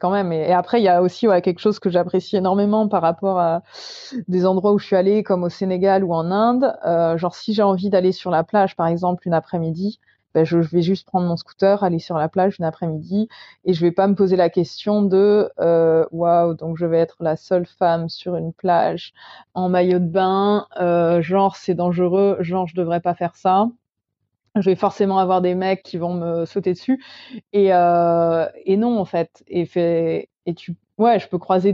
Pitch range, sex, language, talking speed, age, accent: 165-195 Hz, female, French, 215 wpm, 20-39, French